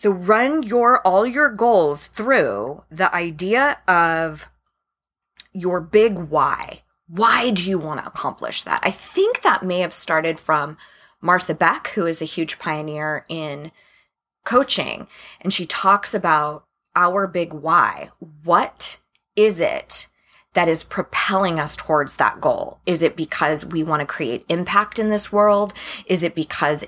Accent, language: American, English